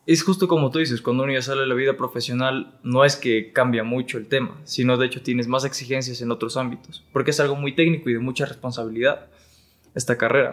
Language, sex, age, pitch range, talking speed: Spanish, male, 20-39, 120-135 Hz, 230 wpm